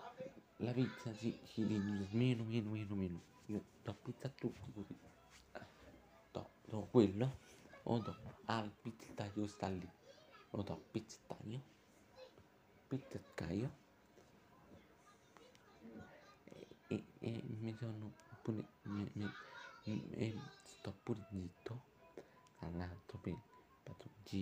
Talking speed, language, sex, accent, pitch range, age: 105 wpm, Italian, male, native, 105-130 Hz, 50-69